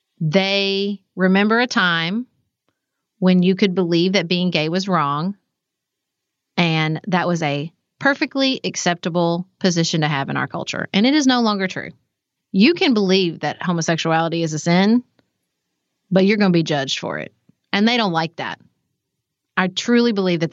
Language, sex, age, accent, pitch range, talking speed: English, female, 30-49, American, 160-200 Hz, 165 wpm